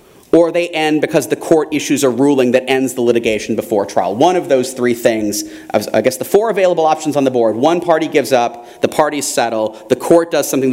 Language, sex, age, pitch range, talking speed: English, male, 30-49, 120-175 Hz, 225 wpm